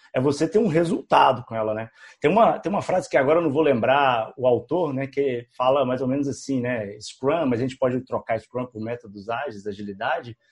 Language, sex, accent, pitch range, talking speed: Portuguese, male, Brazilian, 125-170 Hz, 220 wpm